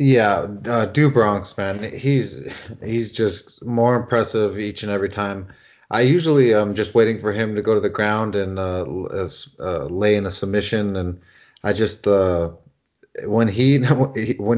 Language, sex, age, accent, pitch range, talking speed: English, male, 30-49, American, 100-115 Hz, 165 wpm